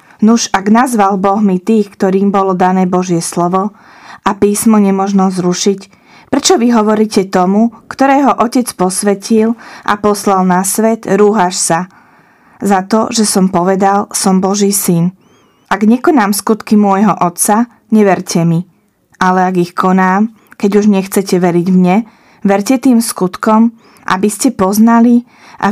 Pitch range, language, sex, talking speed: 185-220 Hz, Slovak, female, 140 wpm